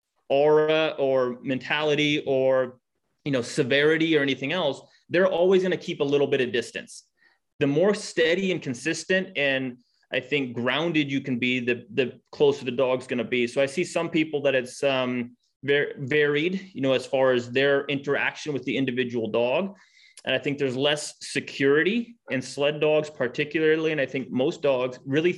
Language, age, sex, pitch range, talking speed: English, 30-49, male, 130-160 Hz, 180 wpm